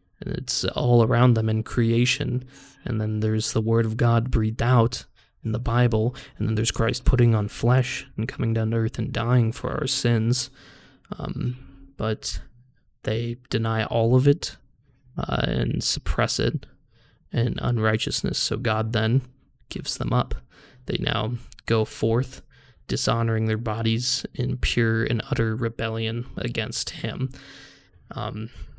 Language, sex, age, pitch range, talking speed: English, male, 20-39, 110-125 Hz, 145 wpm